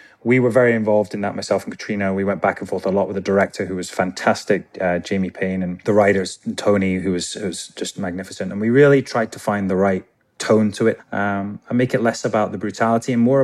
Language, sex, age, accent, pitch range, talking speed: English, male, 20-39, British, 95-115 Hz, 250 wpm